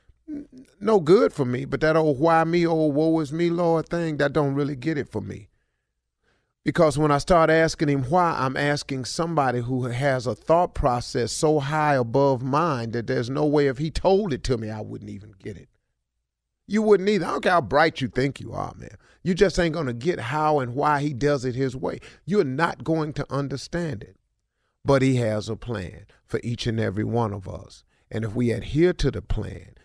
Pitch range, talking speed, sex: 105-150 Hz, 215 wpm, male